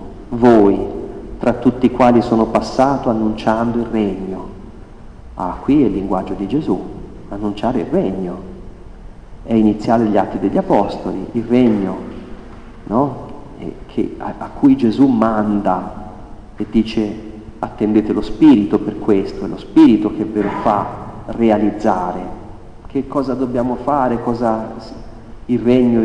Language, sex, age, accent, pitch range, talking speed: Italian, male, 40-59, native, 105-125 Hz, 125 wpm